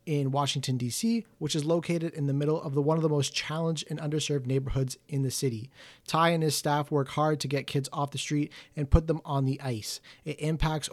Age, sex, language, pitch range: 30-49, male, English, 135-155 Hz